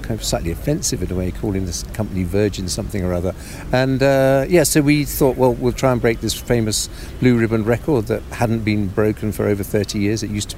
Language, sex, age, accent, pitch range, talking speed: English, male, 50-69, British, 95-115 Hz, 220 wpm